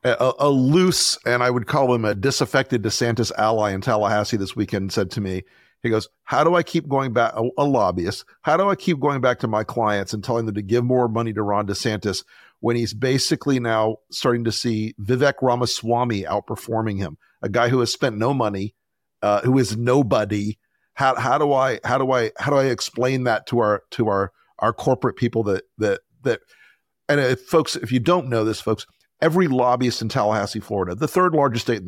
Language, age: English, 50-69